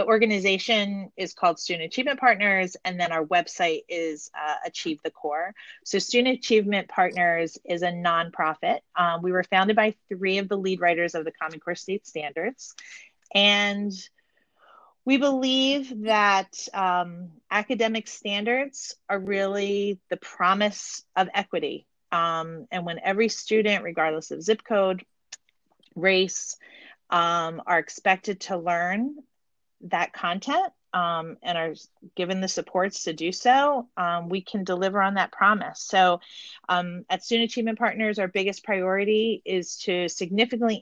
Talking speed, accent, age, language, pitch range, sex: 145 wpm, American, 30-49, English, 170-210 Hz, female